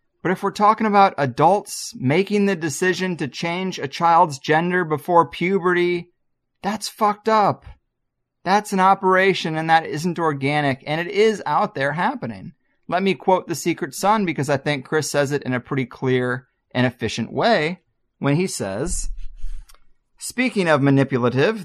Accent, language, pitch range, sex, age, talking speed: American, English, 125-180 Hz, male, 30-49, 160 wpm